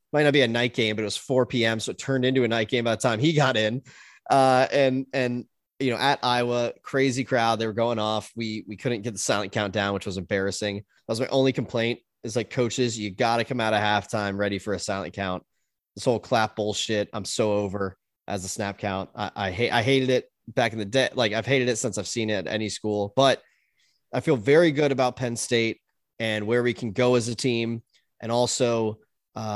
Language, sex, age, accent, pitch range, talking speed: English, male, 20-39, American, 105-125 Hz, 240 wpm